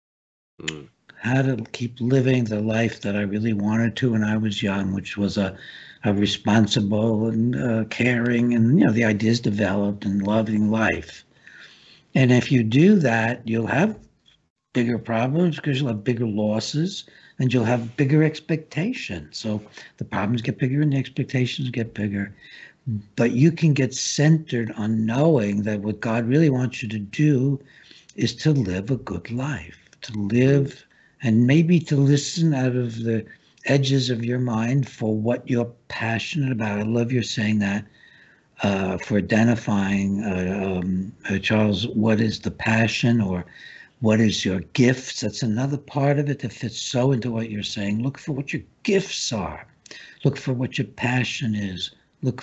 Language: English